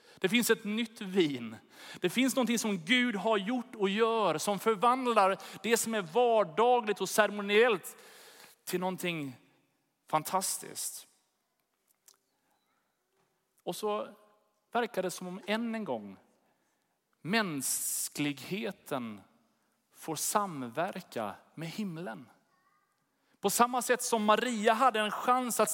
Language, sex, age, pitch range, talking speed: Swedish, male, 30-49, 160-225 Hz, 110 wpm